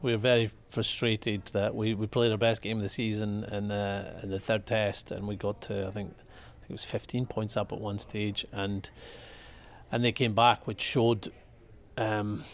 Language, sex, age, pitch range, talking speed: English, male, 30-49, 105-120 Hz, 210 wpm